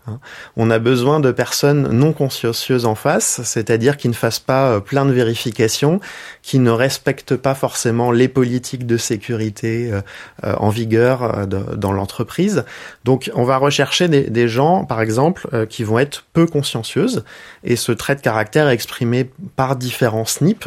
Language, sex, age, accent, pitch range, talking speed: French, male, 30-49, French, 110-135 Hz, 155 wpm